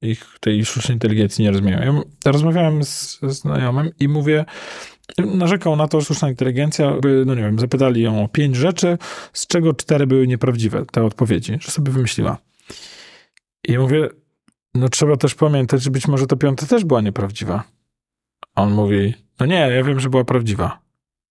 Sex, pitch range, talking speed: male, 125-155 Hz, 170 wpm